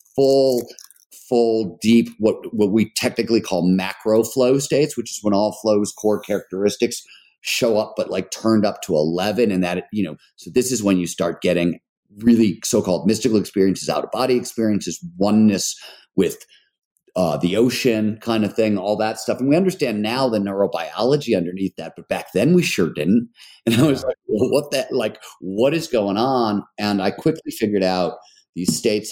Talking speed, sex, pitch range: 180 wpm, male, 90-115 Hz